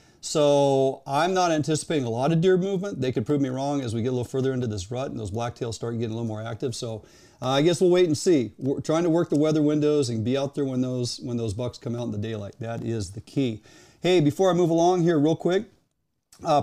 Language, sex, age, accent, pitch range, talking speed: English, male, 40-59, American, 125-160 Hz, 265 wpm